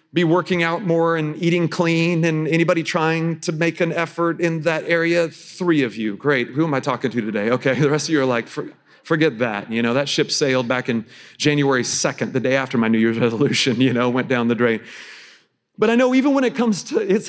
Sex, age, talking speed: male, 40-59, 235 wpm